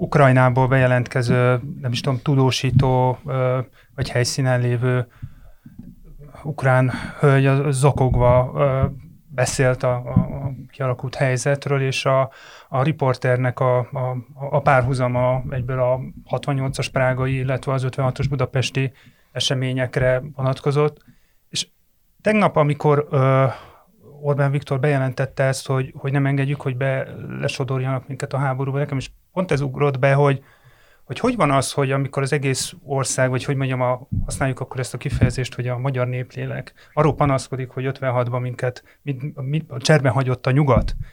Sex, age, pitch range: male, 30-49, 130-145 Hz